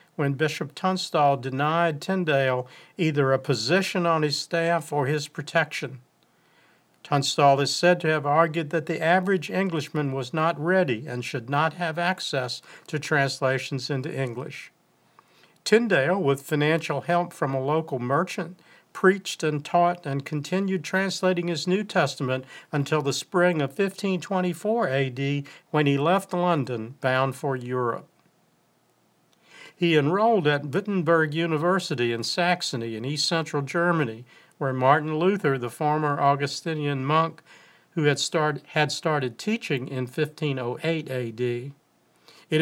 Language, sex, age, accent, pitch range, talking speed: English, male, 50-69, American, 140-175 Hz, 125 wpm